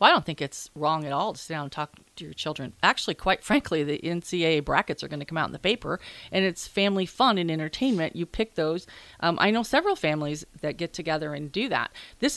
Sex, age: female, 40-59